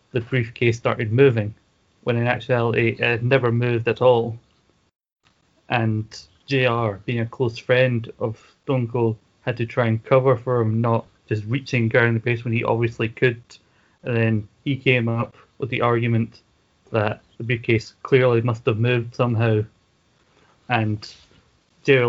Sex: male